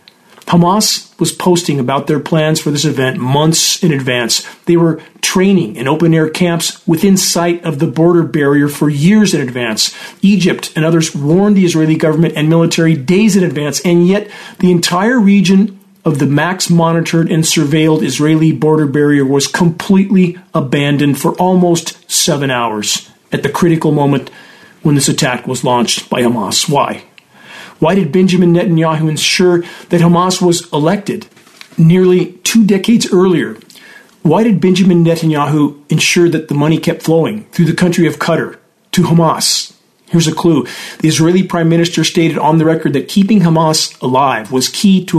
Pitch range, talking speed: 145-180 Hz, 160 wpm